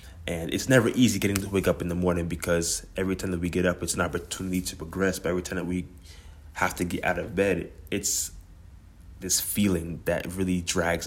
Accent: American